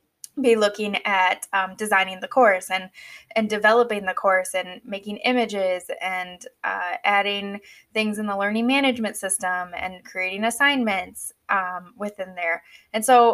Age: 10-29